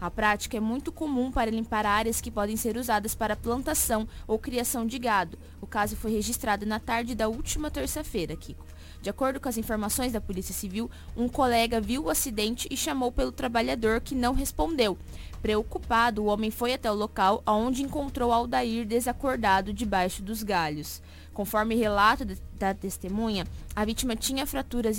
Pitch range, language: 205-245 Hz, Portuguese